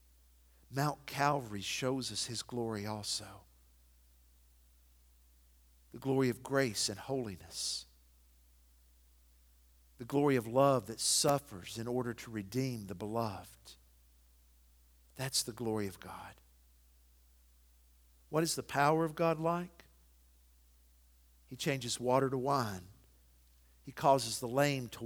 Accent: American